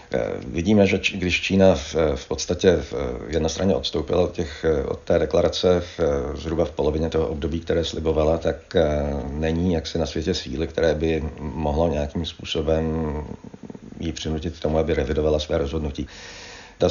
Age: 50-69